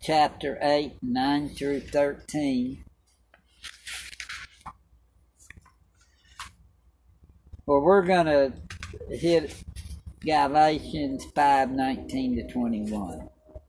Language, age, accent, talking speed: English, 60-79, American, 65 wpm